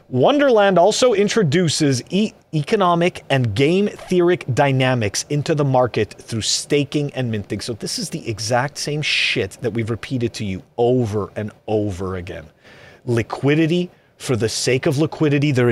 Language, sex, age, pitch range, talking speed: English, male, 30-49, 135-215 Hz, 140 wpm